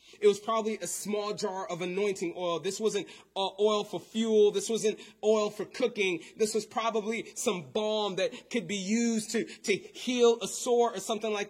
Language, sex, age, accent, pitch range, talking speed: English, male, 30-49, American, 195-225 Hz, 195 wpm